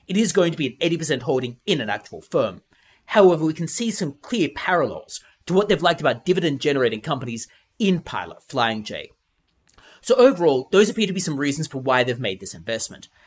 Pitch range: 130-200 Hz